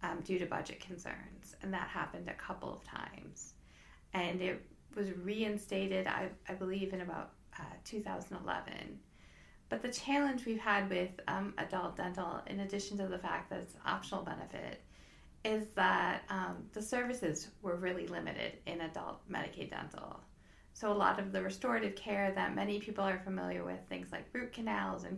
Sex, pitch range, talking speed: female, 175-215 Hz, 170 wpm